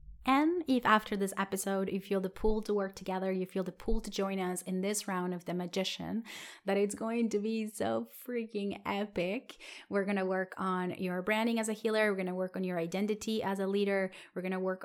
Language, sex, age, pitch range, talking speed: English, female, 20-39, 180-205 Hz, 230 wpm